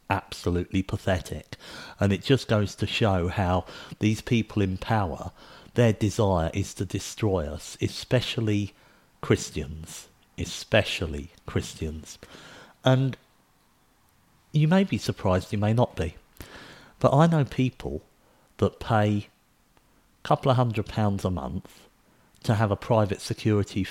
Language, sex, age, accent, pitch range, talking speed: English, male, 50-69, British, 100-125 Hz, 125 wpm